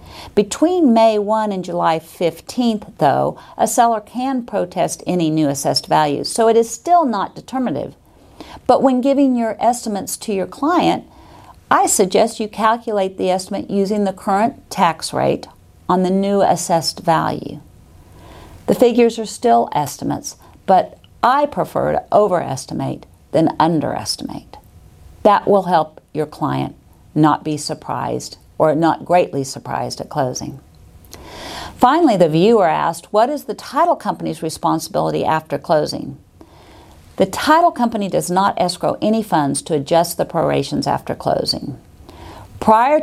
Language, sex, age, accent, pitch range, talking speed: English, female, 50-69, American, 155-225 Hz, 135 wpm